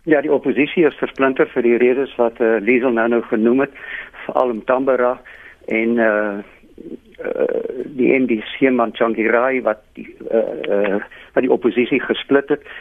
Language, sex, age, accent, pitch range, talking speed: Dutch, male, 50-69, Dutch, 115-140 Hz, 160 wpm